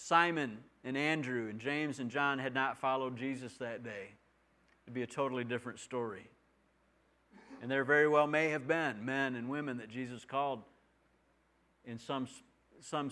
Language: English